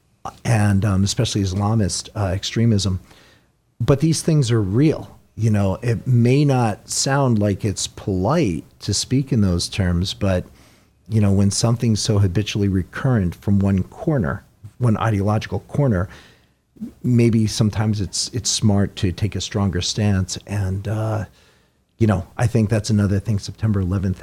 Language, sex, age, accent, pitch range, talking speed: English, male, 40-59, American, 100-130 Hz, 150 wpm